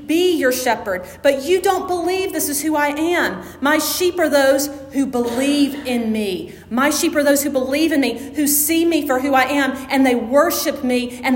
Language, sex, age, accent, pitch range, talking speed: English, female, 40-59, American, 240-290 Hz, 210 wpm